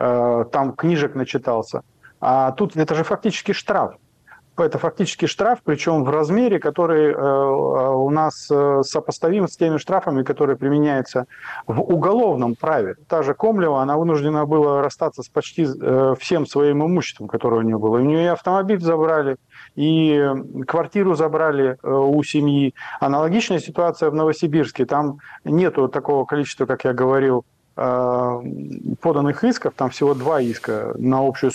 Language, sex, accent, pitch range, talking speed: Russian, male, native, 130-170 Hz, 135 wpm